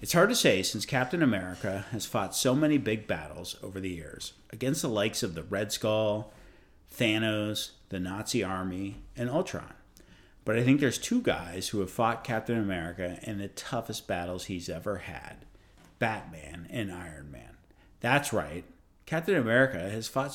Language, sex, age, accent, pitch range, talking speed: English, male, 50-69, American, 90-115 Hz, 170 wpm